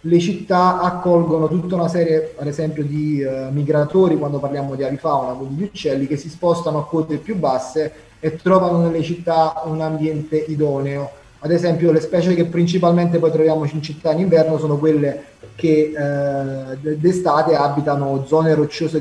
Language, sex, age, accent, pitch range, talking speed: Italian, male, 20-39, native, 145-175 Hz, 165 wpm